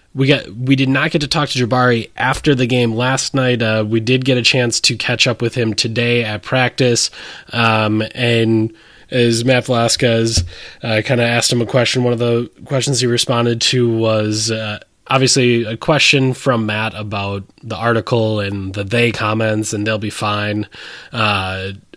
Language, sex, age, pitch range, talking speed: English, male, 20-39, 110-130 Hz, 185 wpm